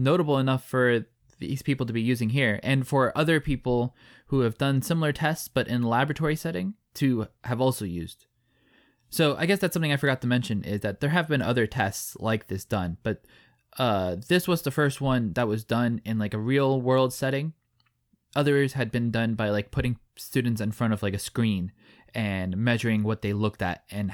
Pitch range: 110-145 Hz